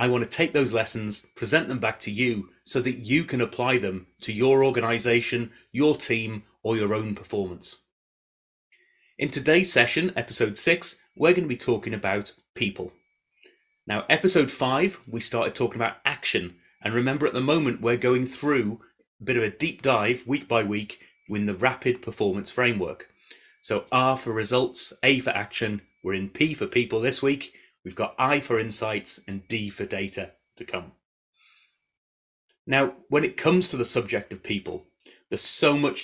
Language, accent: English, British